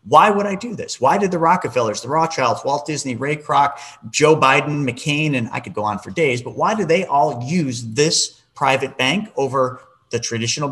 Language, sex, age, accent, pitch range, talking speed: English, male, 40-59, American, 120-155 Hz, 205 wpm